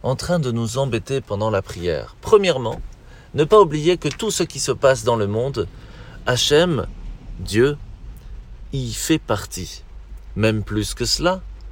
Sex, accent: male, French